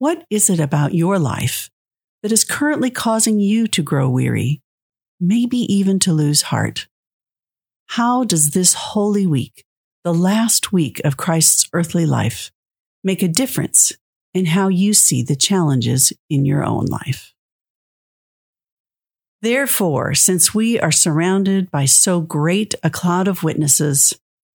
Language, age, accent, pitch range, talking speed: English, 50-69, American, 150-210 Hz, 135 wpm